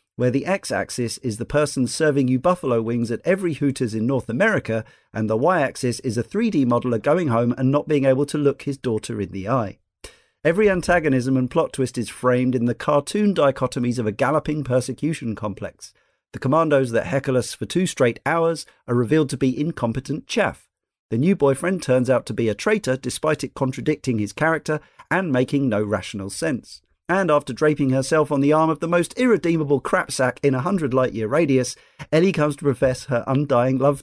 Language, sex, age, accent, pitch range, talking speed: English, male, 40-59, British, 120-150 Hz, 195 wpm